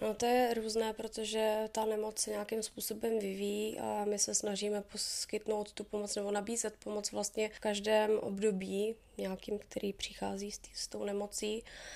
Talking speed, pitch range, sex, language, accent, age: 160 wpm, 195-210 Hz, female, Czech, native, 20-39